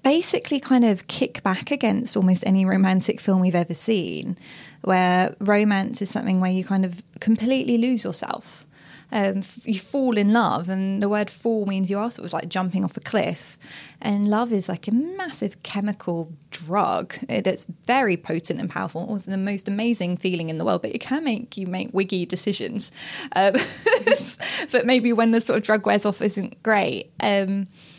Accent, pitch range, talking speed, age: British, 185-225 Hz, 185 wpm, 10-29